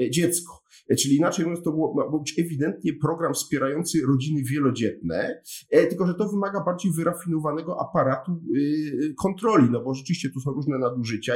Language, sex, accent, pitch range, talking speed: Polish, male, native, 130-175 Hz, 155 wpm